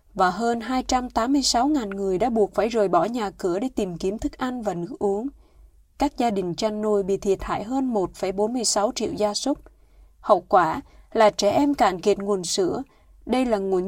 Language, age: Vietnamese, 20-39